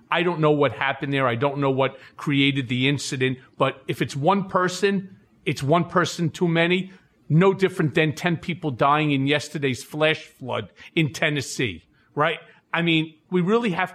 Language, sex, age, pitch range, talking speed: English, male, 40-59, 145-215 Hz, 175 wpm